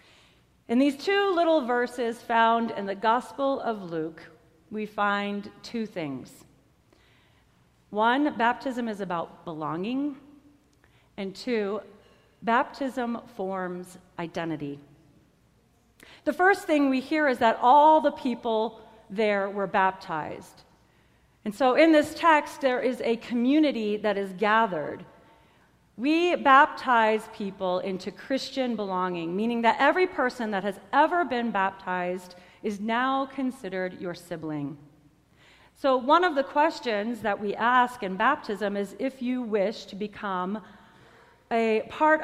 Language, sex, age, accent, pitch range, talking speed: English, female, 40-59, American, 190-265 Hz, 125 wpm